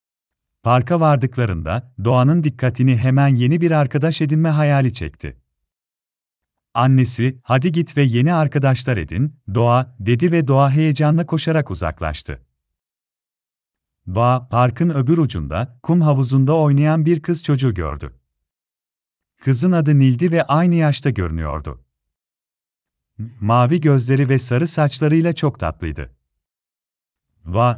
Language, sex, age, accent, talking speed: Turkish, male, 40-59, native, 110 wpm